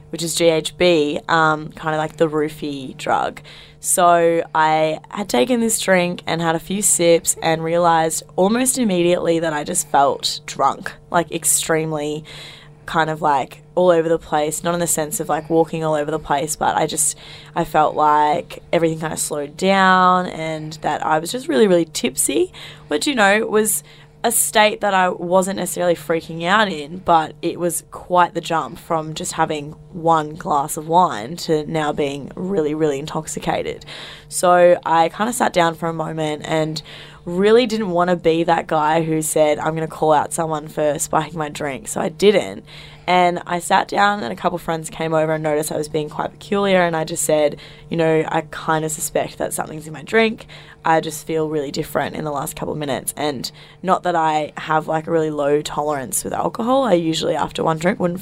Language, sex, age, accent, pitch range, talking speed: English, female, 10-29, Australian, 155-175 Hz, 200 wpm